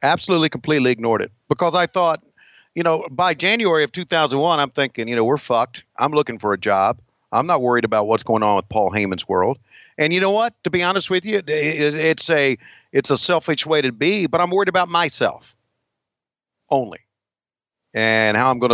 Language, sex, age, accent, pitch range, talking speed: English, male, 50-69, American, 110-160 Hz, 200 wpm